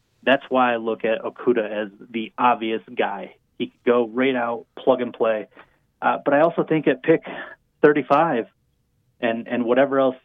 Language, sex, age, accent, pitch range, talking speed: English, male, 30-49, American, 115-135 Hz, 175 wpm